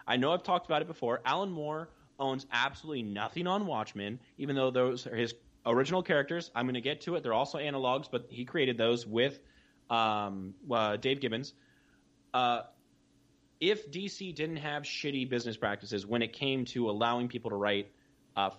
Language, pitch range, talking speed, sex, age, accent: English, 115-145 Hz, 180 wpm, male, 20-39, American